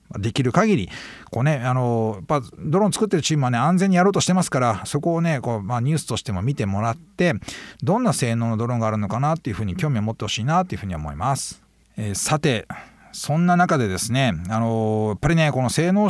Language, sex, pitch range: Japanese, male, 110-170 Hz